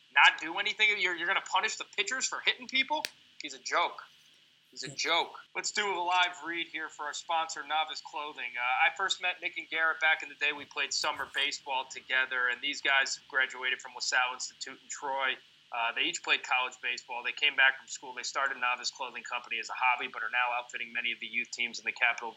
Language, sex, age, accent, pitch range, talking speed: English, male, 20-39, American, 130-160 Hz, 230 wpm